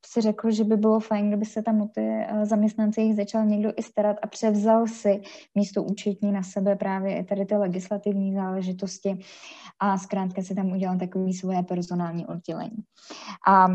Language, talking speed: Czech, 175 wpm